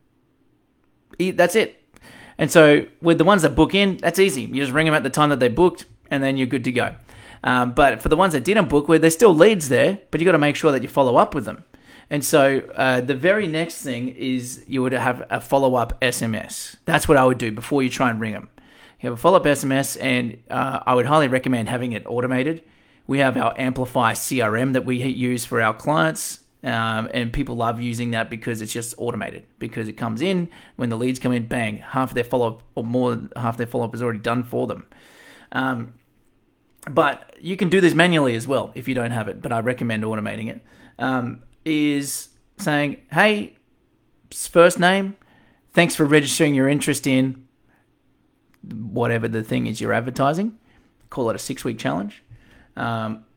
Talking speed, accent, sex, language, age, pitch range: 205 wpm, Australian, male, English, 30-49, 120-155 Hz